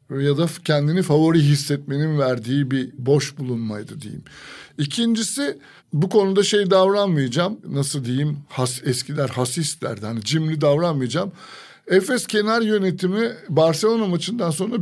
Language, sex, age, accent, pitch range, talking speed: Turkish, male, 60-79, native, 150-195 Hz, 115 wpm